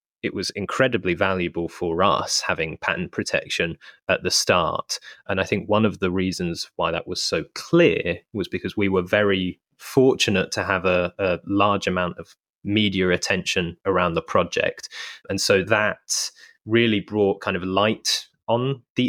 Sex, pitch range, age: male, 95-115 Hz, 20-39